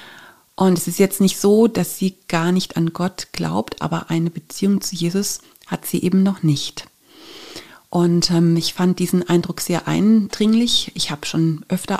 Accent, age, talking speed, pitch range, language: German, 30-49, 175 wpm, 165-195 Hz, German